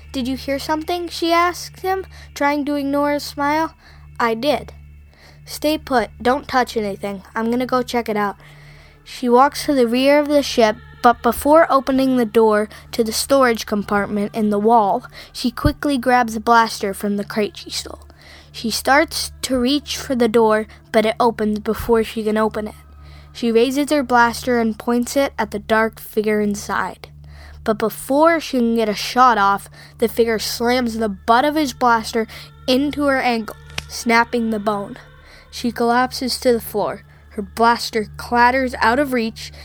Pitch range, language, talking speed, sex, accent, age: 210-255 Hz, English, 175 wpm, female, American, 20-39